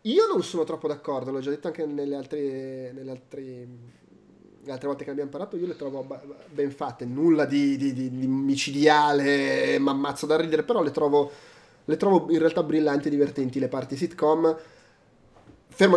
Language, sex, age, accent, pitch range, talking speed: Italian, male, 30-49, native, 145-175 Hz, 175 wpm